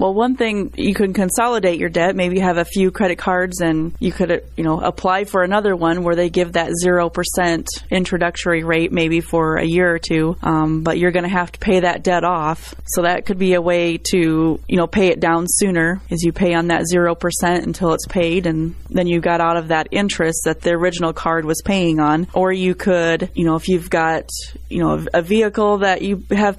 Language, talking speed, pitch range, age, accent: English, 230 wpm, 165-185 Hz, 20-39, American